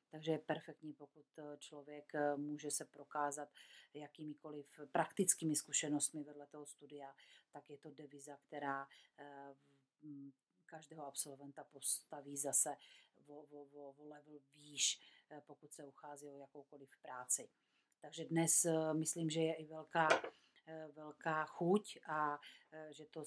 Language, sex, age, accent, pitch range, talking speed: Czech, female, 40-59, native, 140-155 Hz, 120 wpm